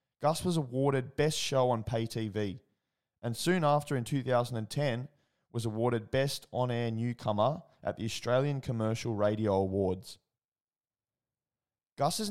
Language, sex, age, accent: English, male, 20-39, Australian